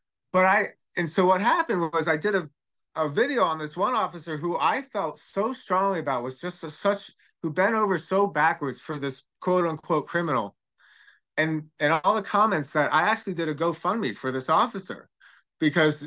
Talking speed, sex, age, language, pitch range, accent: 190 wpm, male, 30-49, English, 140-185 Hz, American